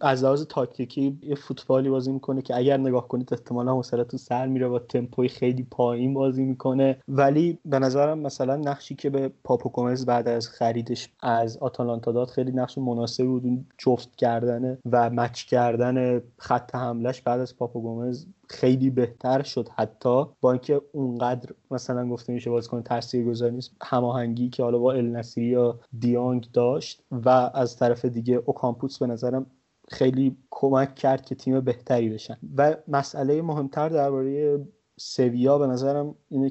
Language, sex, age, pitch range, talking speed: Persian, male, 30-49, 120-135 Hz, 160 wpm